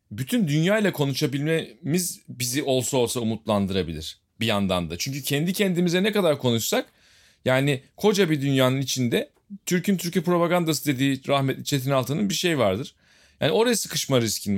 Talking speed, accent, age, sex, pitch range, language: 150 wpm, native, 40-59, male, 125-175 Hz, Turkish